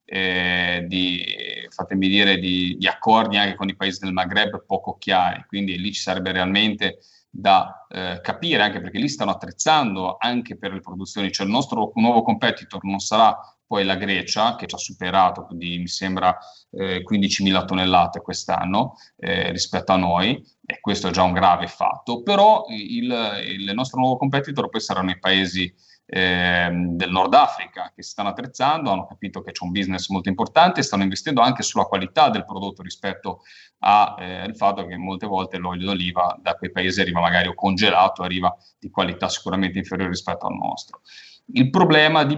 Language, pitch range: Italian, 90-100 Hz